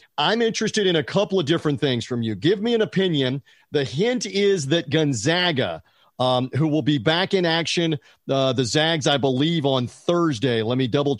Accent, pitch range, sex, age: American, 145-185 Hz, male, 40-59